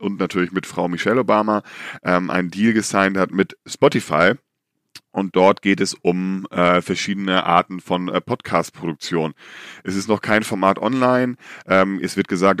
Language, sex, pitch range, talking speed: German, male, 85-100 Hz, 160 wpm